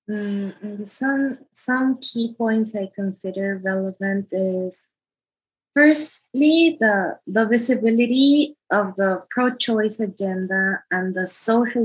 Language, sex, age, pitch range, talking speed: English, female, 20-39, 195-230 Hz, 100 wpm